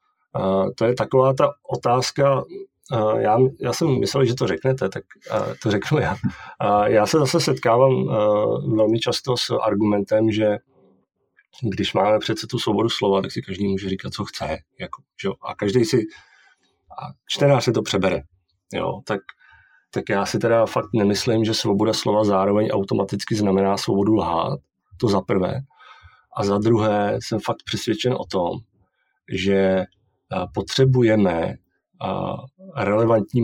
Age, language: 40-59, Czech